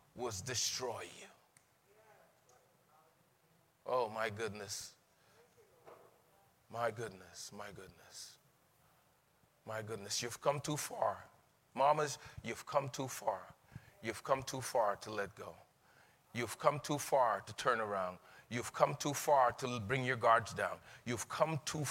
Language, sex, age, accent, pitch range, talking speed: English, male, 30-49, American, 115-145 Hz, 130 wpm